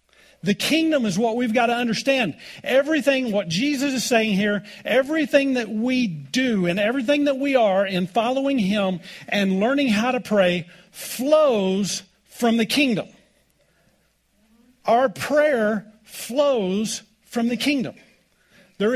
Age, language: 50-69, English